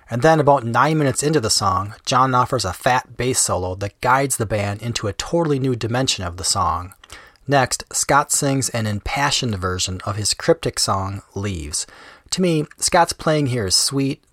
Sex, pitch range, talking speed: male, 105-145 Hz, 185 wpm